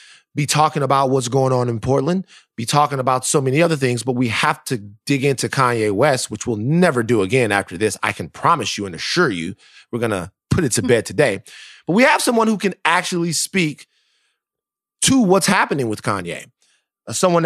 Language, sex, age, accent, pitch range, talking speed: English, male, 30-49, American, 120-175 Hz, 205 wpm